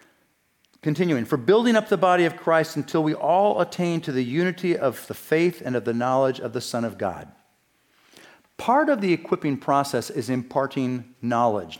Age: 50-69